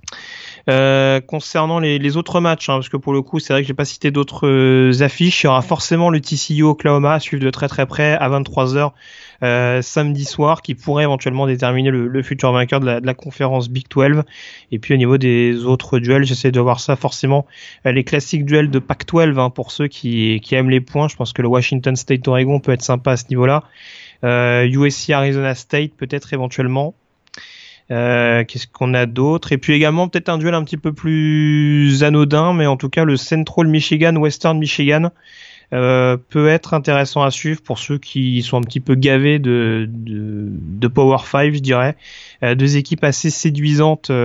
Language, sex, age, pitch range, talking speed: French, male, 30-49, 130-150 Hz, 200 wpm